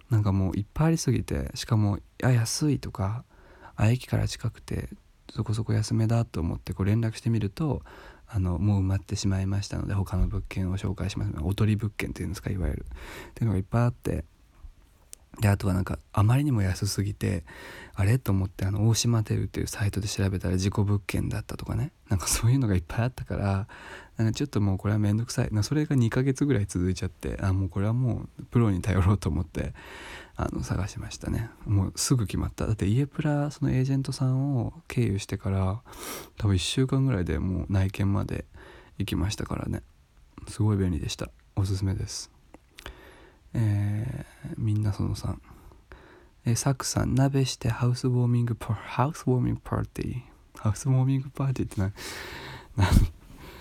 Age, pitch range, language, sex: 20-39, 95-115 Hz, Japanese, male